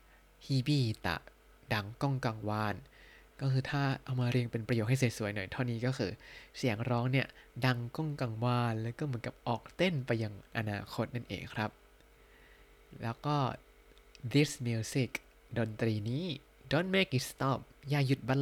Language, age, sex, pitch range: Thai, 20-39, male, 115-135 Hz